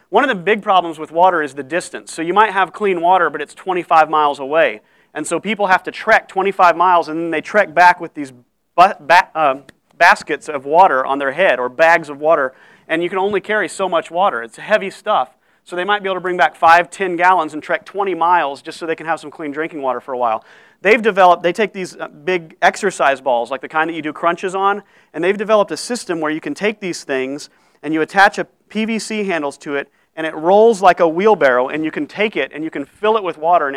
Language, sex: English, male